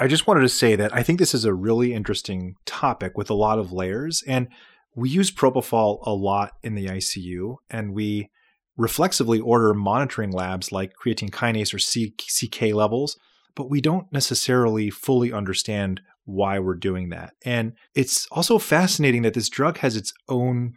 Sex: male